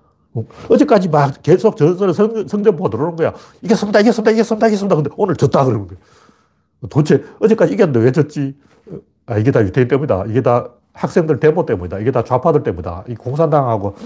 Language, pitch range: Korean, 105-165 Hz